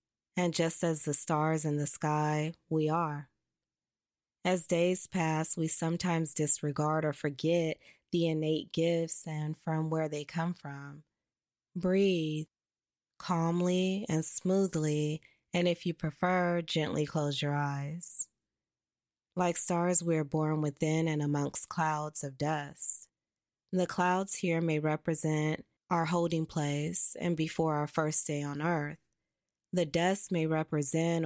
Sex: female